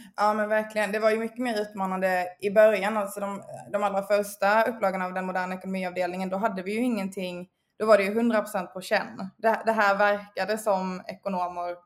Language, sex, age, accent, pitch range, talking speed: Swedish, female, 20-39, native, 185-210 Hz, 200 wpm